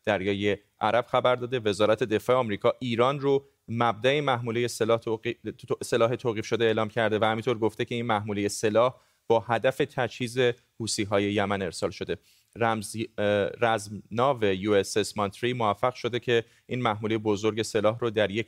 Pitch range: 110-130 Hz